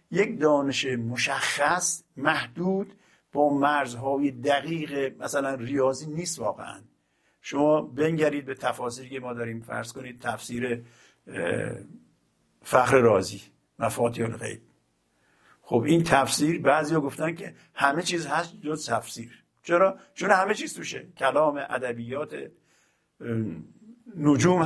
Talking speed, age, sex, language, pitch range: 105 wpm, 50-69, male, Persian, 130-170 Hz